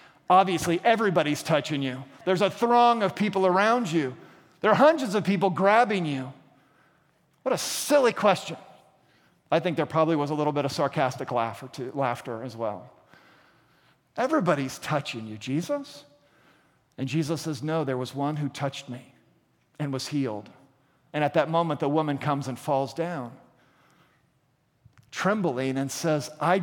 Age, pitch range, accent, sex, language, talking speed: 50-69, 135-185 Hz, American, male, English, 150 wpm